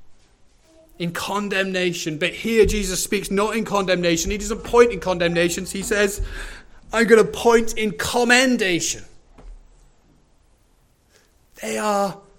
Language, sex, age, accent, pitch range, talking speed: English, male, 30-49, British, 140-195 Hz, 115 wpm